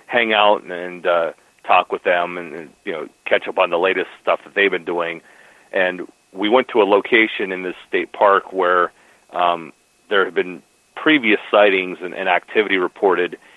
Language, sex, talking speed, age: English, male, 180 wpm, 40-59